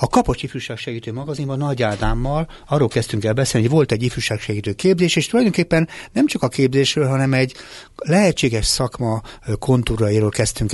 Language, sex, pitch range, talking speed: Hungarian, male, 105-130 Hz, 155 wpm